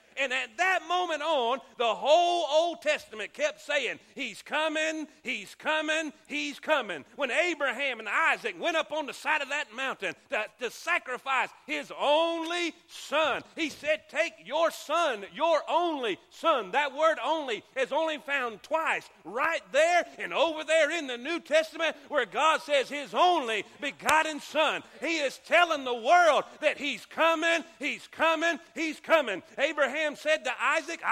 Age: 40-59